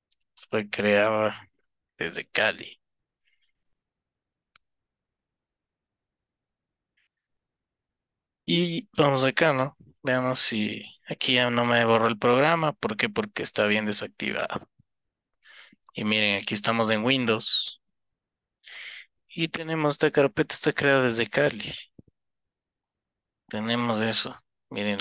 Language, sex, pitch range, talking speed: English, male, 105-125 Hz, 95 wpm